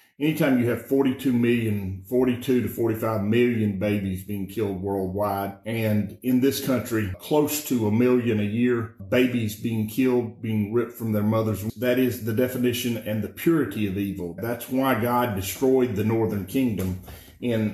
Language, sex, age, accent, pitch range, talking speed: English, male, 40-59, American, 105-125 Hz, 160 wpm